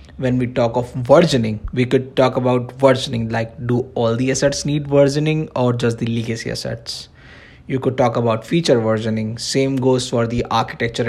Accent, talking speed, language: Indian, 180 wpm, English